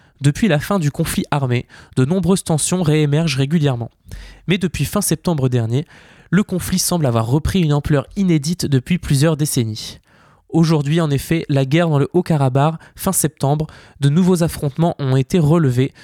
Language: French